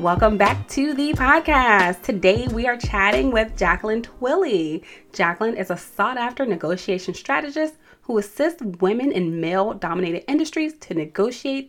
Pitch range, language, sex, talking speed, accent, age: 170-255 Hz, English, female, 145 wpm, American, 30-49